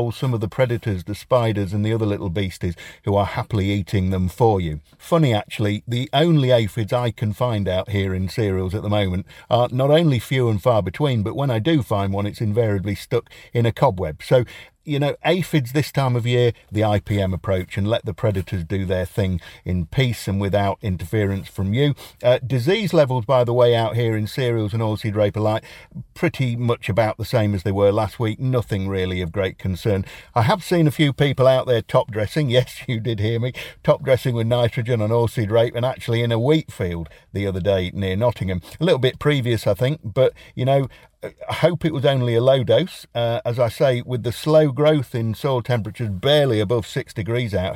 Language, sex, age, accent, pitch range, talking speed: English, male, 50-69, British, 100-130 Hz, 215 wpm